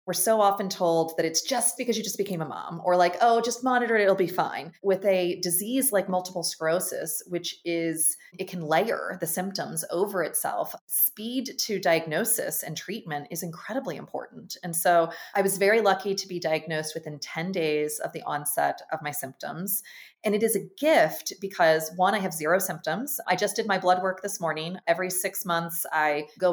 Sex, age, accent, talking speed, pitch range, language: female, 30-49, American, 195 wpm, 165-220 Hz, English